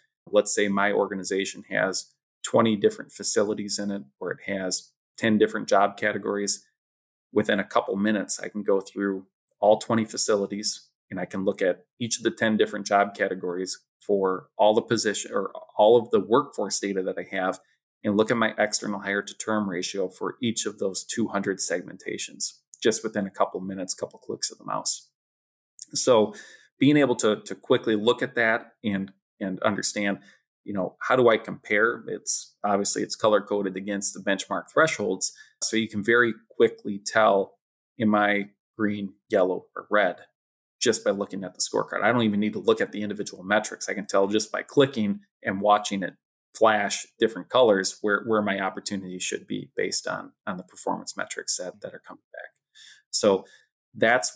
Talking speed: 185 wpm